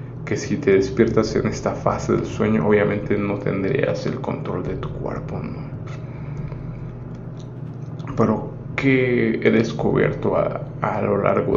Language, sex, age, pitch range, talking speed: Spanish, male, 20-39, 110-140 Hz, 135 wpm